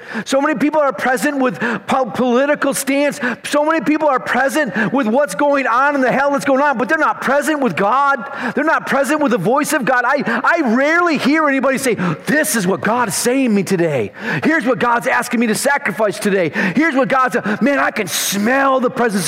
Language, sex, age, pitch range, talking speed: English, male, 40-59, 240-295 Hz, 220 wpm